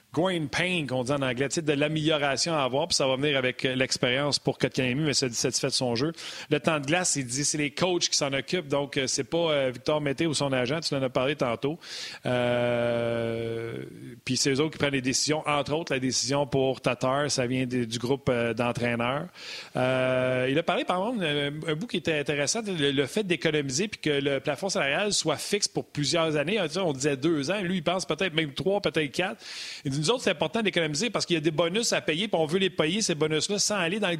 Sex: male